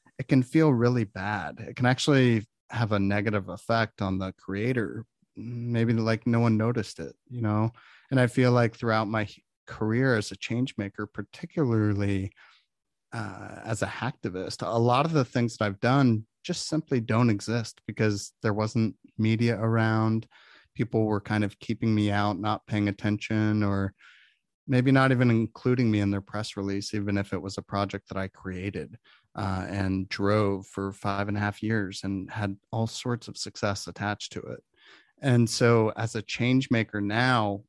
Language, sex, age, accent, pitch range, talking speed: English, male, 30-49, American, 105-120 Hz, 175 wpm